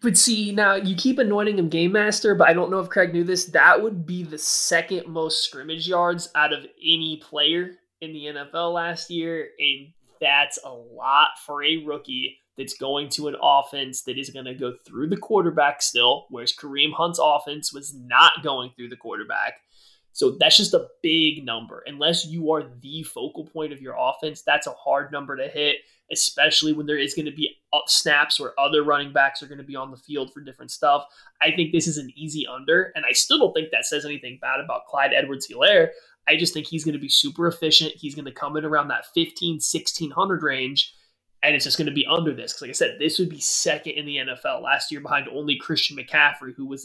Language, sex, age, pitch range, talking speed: English, male, 20-39, 140-170 Hz, 220 wpm